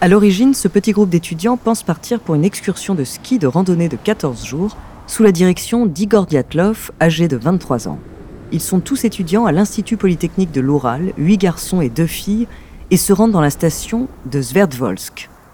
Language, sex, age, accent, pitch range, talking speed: French, female, 30-49, French, 135-195 Hz, 190 wpm